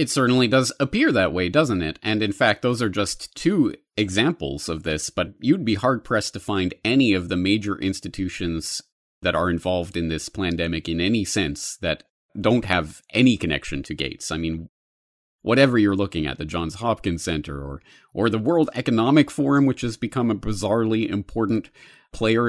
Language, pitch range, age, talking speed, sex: English, 85-110 Hz, 30-49, 180 wpm, male